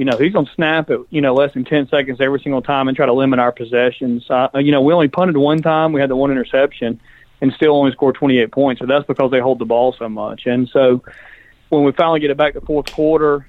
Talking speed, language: 270 wpm, English